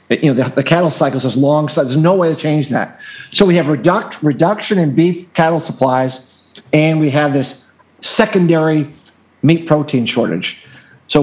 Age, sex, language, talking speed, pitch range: 50-69, male, English, 175 wpm, 135-170 Hz